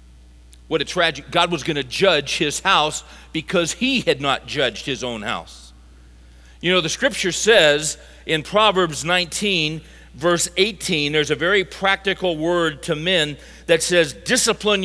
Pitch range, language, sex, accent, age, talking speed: 155-205 Hz, English, male, American, 50-69, 150 wpm